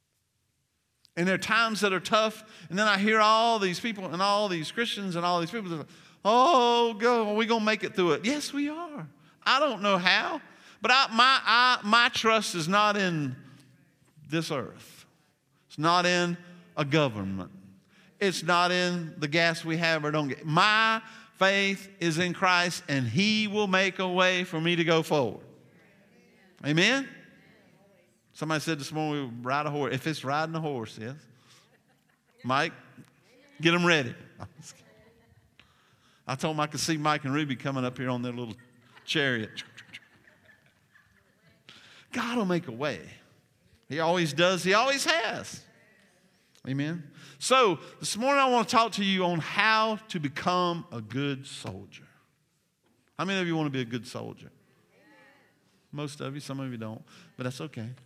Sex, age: male, 50-69